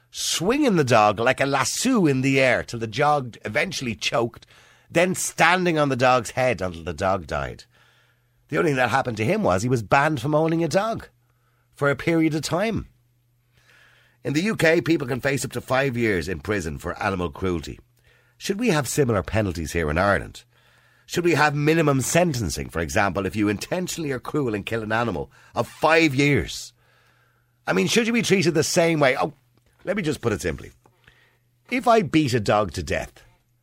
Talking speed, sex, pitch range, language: 195 wpm, male, 95-150 Hz, English